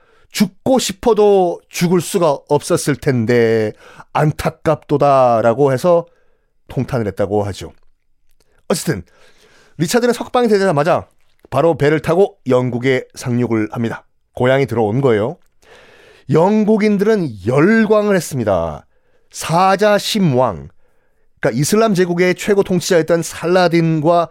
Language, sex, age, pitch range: Korean, male, 30-49, 130-215 Hz